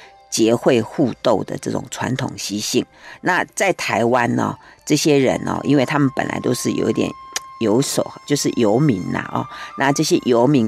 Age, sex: 50-69, female